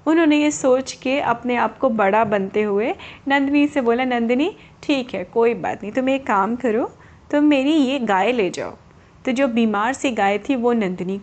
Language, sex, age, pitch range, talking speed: Hindi, female, 30-49, 215-275 Hz, 200 wpm